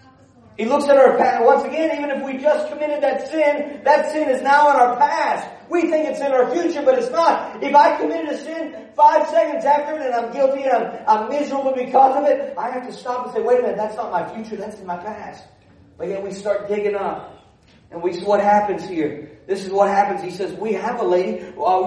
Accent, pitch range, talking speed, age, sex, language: American, 180-245 Hz, 245 wpm, 40-59, male, English